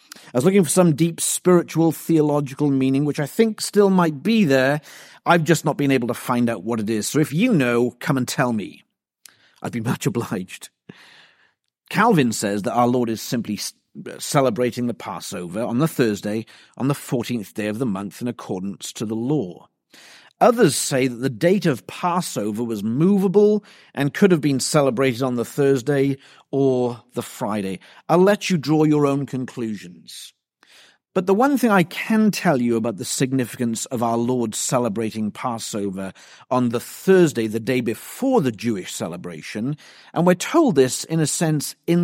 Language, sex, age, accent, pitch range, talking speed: English, male, 40-59, British, 120-165 Hz, 175 wpm